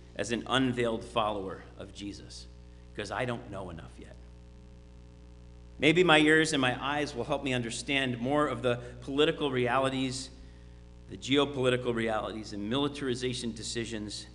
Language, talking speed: English, 140 wpm